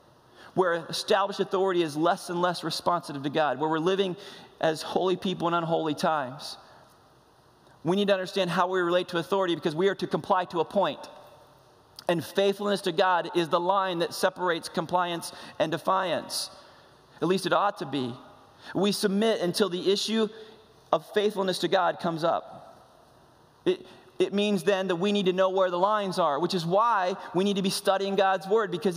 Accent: American